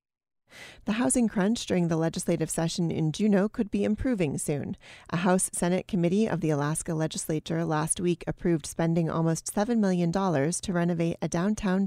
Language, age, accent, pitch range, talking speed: English, 30-49, American, 160-190 Hz, 155 wpm